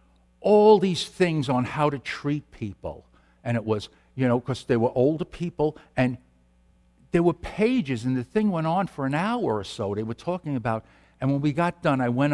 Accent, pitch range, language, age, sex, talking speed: American, 95-145 Hz, English, 60-79, male, 210 wpm